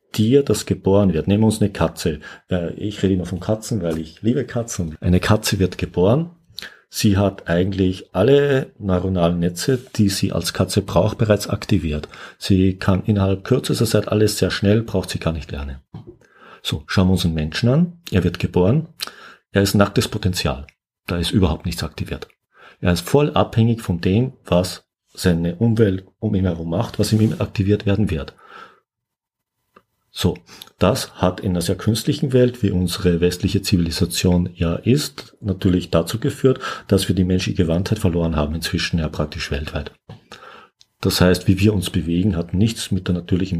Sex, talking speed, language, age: male, 170 wpm, German, 50-69